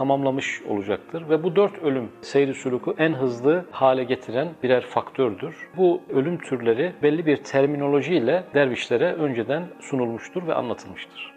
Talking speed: 135 wpm